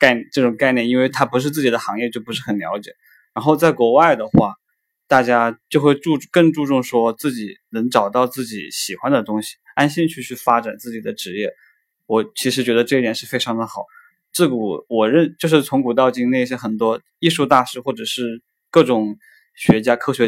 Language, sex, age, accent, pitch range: Chinese, male, 20-39, native, 115-145 Hz